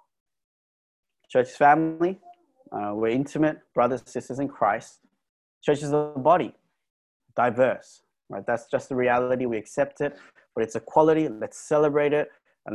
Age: 20-39